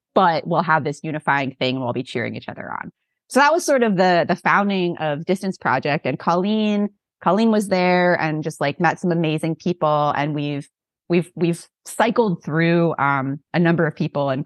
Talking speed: 200 wpm